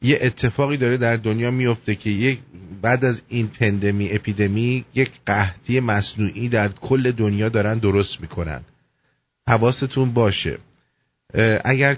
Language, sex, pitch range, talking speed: English, male, 95-120 Hz, 120 wpm